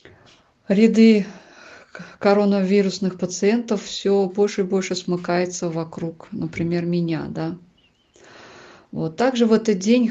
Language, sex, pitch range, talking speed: Russian, female, 180-220 Hz, 100 wpm